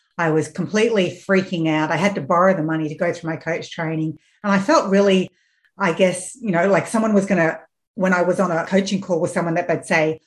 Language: English